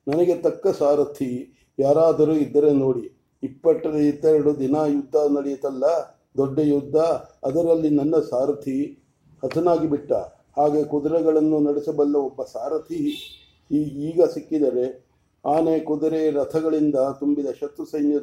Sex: male